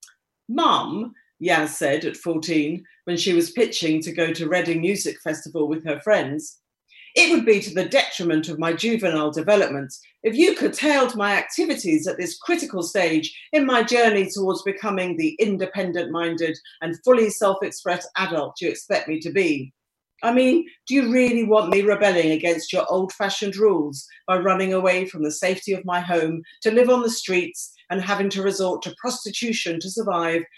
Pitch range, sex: 155-200 Hz, female